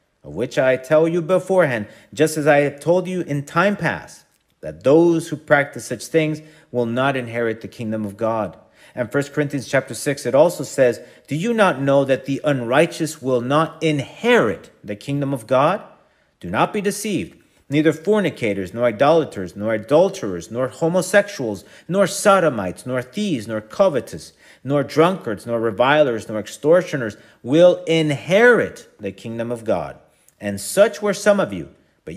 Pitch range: 120-170 Hz